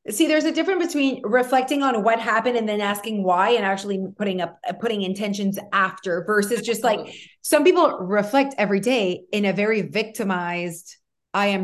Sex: female